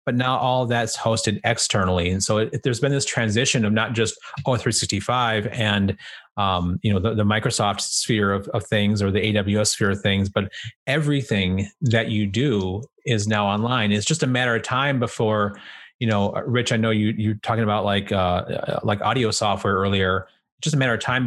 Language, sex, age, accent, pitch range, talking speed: English, male, 30-49, American, 105-125 Hz, 200 wpm